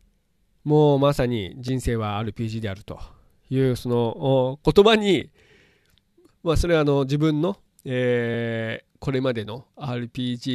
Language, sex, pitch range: Japanese, male, 115-145 Hz